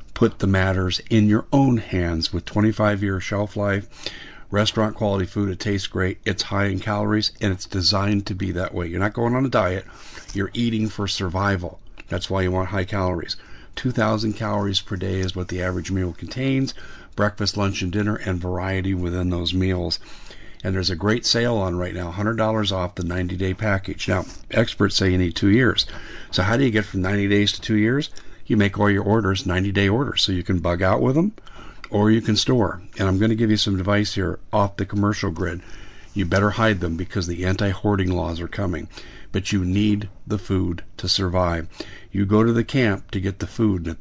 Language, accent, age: English, American, 50-69